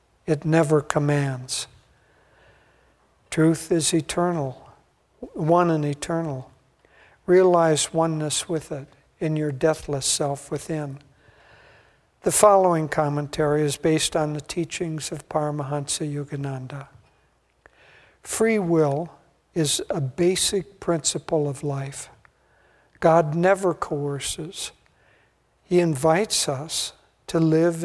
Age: 60-79